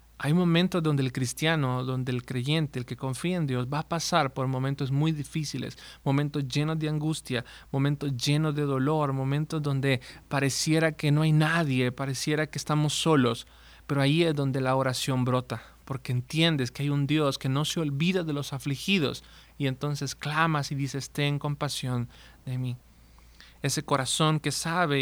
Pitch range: 130-155 Hz